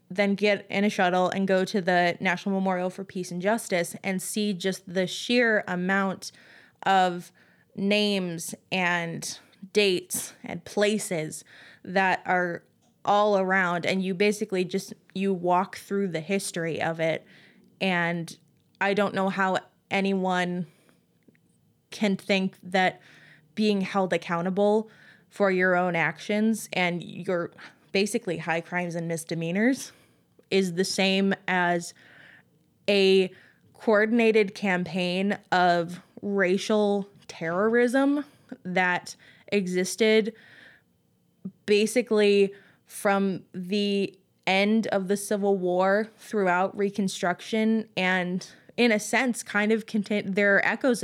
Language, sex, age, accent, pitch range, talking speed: English, female, 20-39, American, 180-205 Hz, 115 wpm